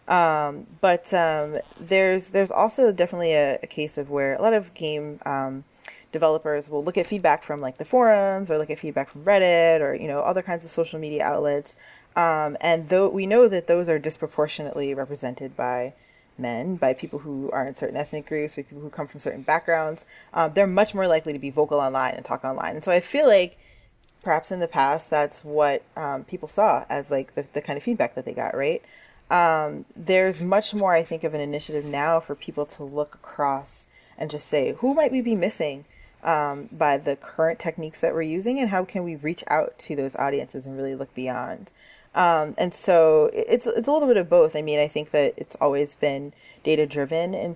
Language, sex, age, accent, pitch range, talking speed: English, female, 20-39, American, 145-190 Hz, 210 wpm